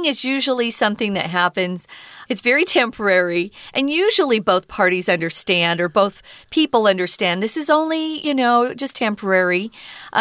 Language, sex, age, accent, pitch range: Chinese, female, 40-59, American, 190-270 Hz